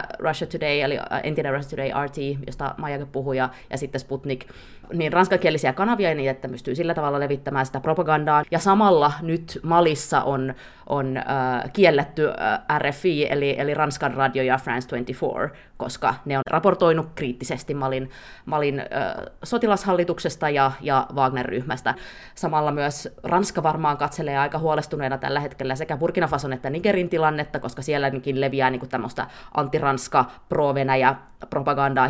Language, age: Finnish, 20-39